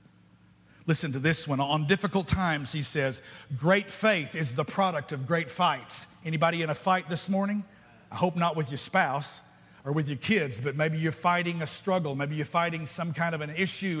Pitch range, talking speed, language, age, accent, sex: 145-185 Hz, 200 wpm, English, 50-69, American, male